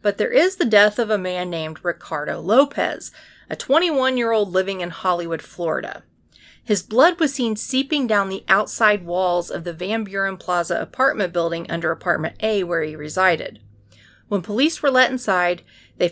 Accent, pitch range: American, 170-230 Hz